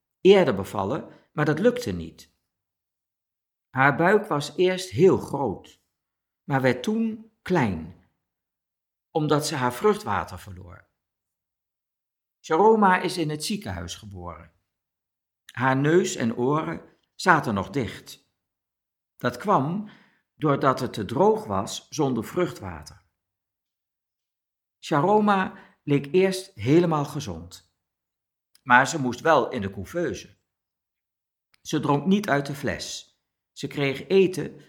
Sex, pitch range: male, 90-155 Hz